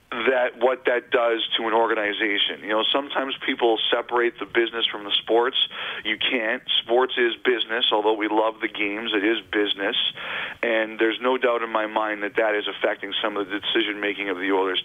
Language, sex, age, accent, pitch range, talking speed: English, male, 40-59, American, 105-125 Hz, 200 wpm